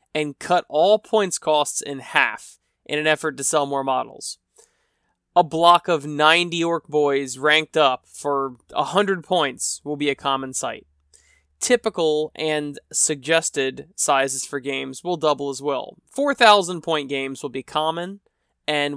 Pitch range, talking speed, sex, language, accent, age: 140-175 Hz, 150 wpm, male, English, American, 20-39